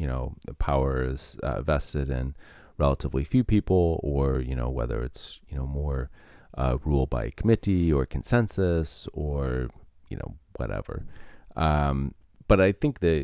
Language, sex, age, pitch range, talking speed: English, male, 30-49, 65-85 Hz, 150 wpm